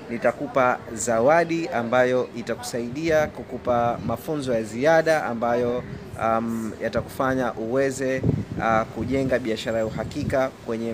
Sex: male